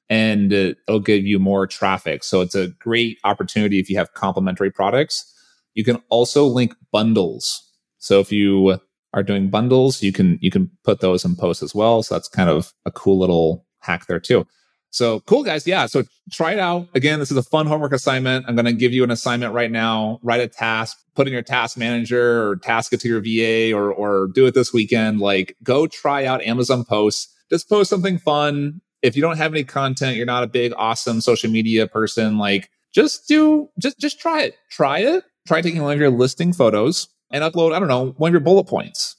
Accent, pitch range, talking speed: American, 105-145 Hz, 215 wpm